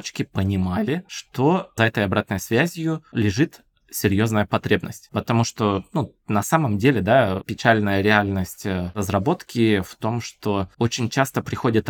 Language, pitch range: Russian, 100-130 Hz